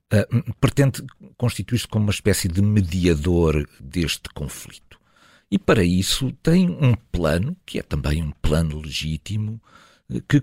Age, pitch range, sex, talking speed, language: 50-69, 75-110 Hz, male, 125 wpm, Portuguese